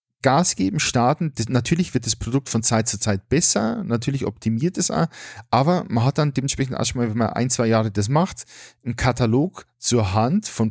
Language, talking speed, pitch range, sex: German, 195 wpm, 110-135 Hz, male